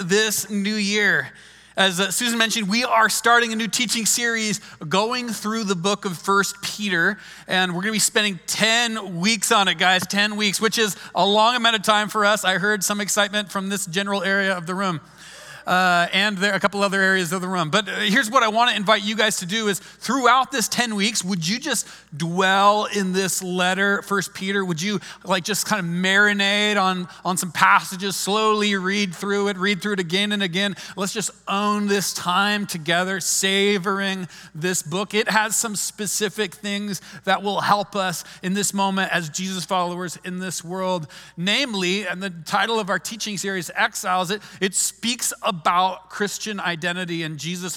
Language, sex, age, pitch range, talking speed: English, male, 30-49, 175-205 Hz, 195 wpm